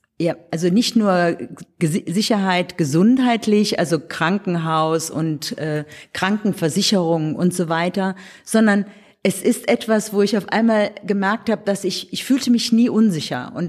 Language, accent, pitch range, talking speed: German, German, 165-200 Hz, 145 wpm